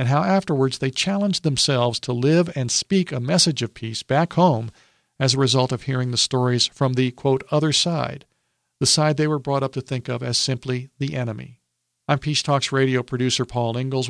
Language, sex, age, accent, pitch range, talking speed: English, male, 50-69, American, 125-150 Hz, 205 wpm